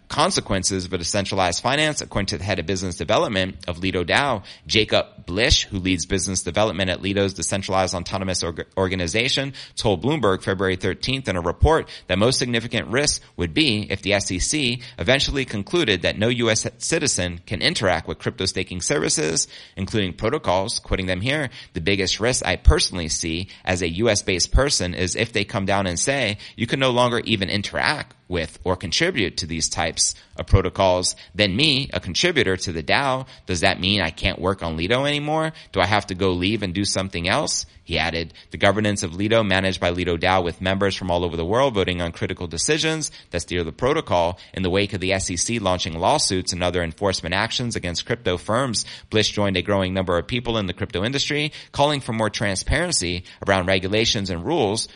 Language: English